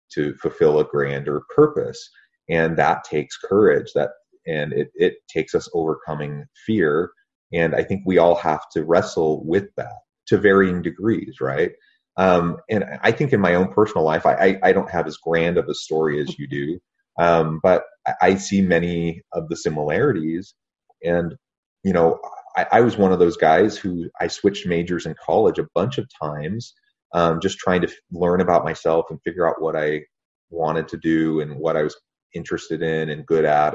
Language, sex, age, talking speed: English, male, 30-49, 185 wpm